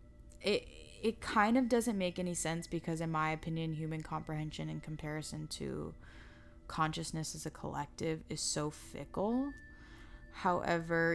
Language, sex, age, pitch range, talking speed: English, female, 10-29, 155-180 Hz, 135 wpm